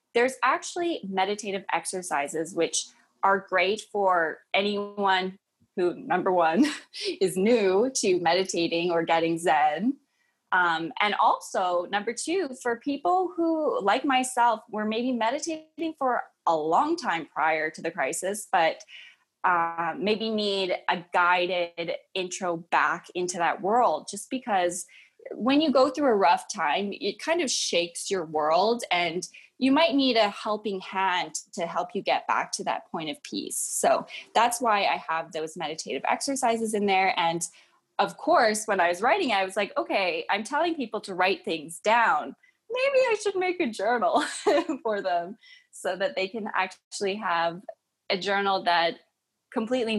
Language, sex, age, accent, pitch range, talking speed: English, female, 20-39, American, 180-260 Hz, 155 wpm